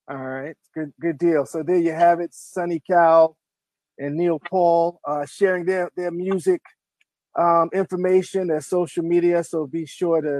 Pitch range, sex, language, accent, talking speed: 145-180 Hz, male, English, American, 160 wpm